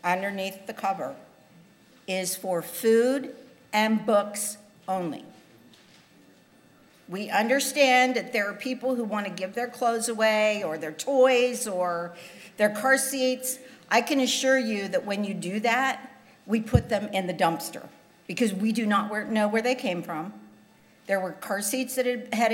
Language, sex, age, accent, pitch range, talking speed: English, female, 50-69, American, 190-245 Hz, 155 wpm